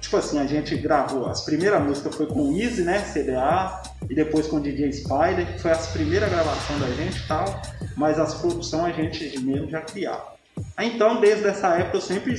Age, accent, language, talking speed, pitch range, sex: 20-39, Brazilian, Portuguese, 210 wpm, 115-180 Hz, male